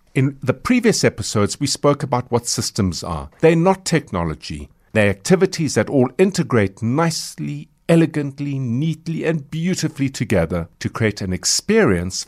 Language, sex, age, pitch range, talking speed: English, male, 50-69, 95-150 Hz, 135 wpm